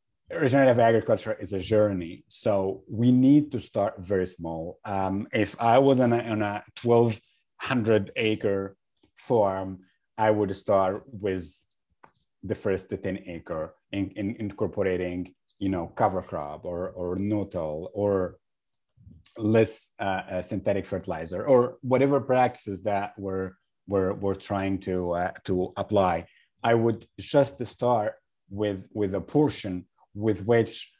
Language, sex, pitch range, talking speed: English, male, 95-115 Hz, 135 wpm